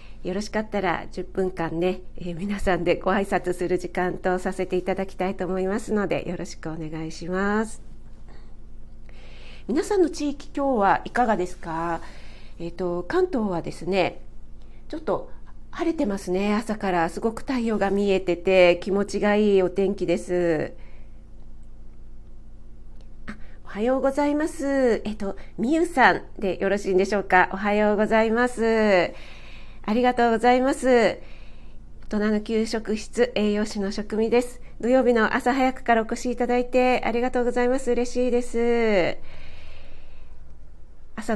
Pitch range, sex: 175-225 Hz, female